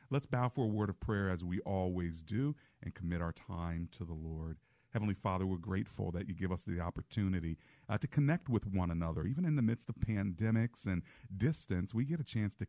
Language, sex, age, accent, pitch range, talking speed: English, male, 40-59, American, 85-110 Hz, 220 wpm